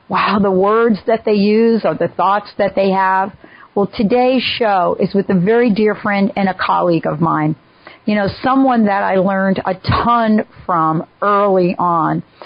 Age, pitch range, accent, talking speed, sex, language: 50-69, 190-230 Hz, American, 180 wpm, female, English